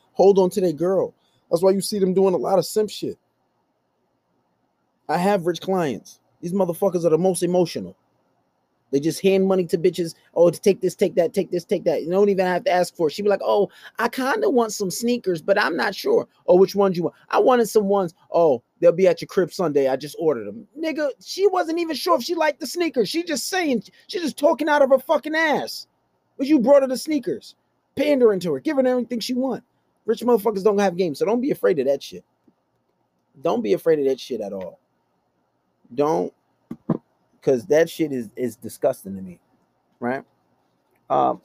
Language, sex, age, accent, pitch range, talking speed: English, male, 30-49, American, 170-245 Hz, 215 wpm